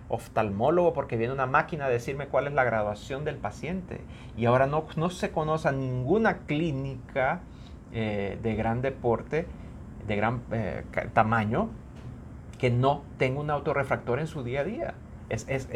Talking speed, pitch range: 150 wpm, 110-140 Hz